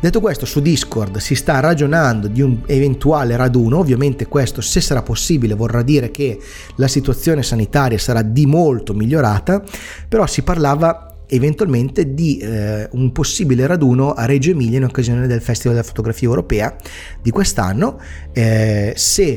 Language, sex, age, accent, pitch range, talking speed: English, male, 30-49, Italian, 110-140 Hz, 150 wpm